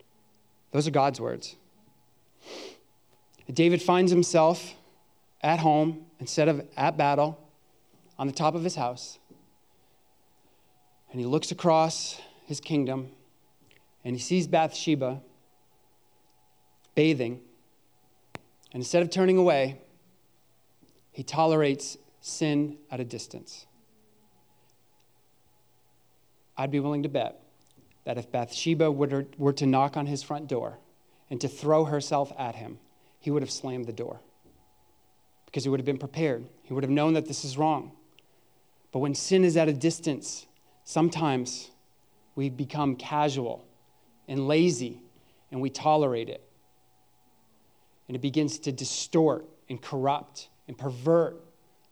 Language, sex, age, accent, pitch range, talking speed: English, male, 30-49, American, 125-155 Hz, 125 wpm